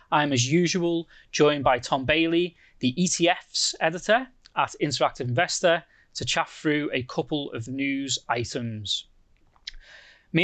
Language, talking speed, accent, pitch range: English, 125 wpm, British, 140-185 Hz